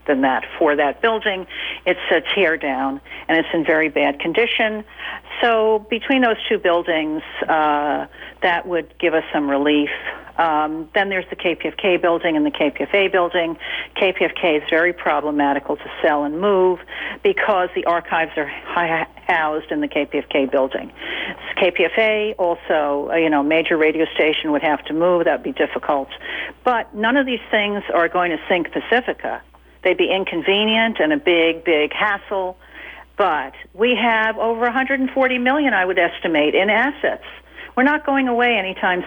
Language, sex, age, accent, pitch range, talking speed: English, female, 60-79, American, 160-225 Hz, 160 wpm